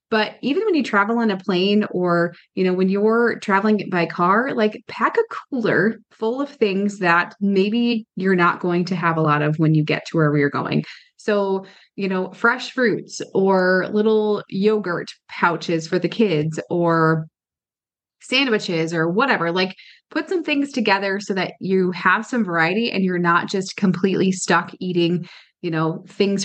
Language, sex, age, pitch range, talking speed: English, female, 20-39, 170-230 Hz, 175 wpm